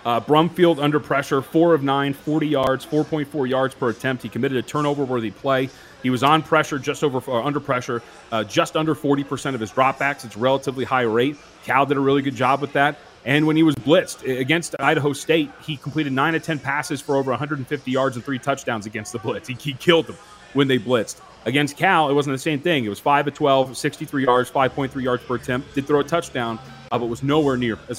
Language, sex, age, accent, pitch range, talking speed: English, male, 30-49, American, 125-155 Hz, 235 wpm